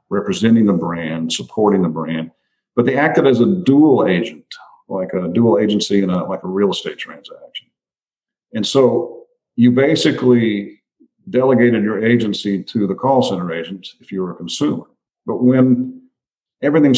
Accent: American